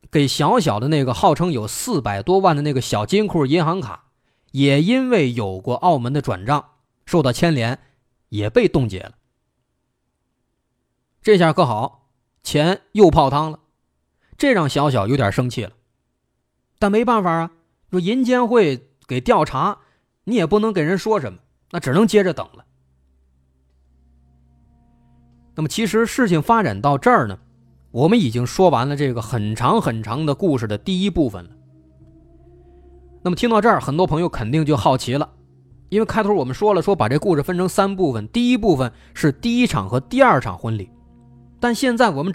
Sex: male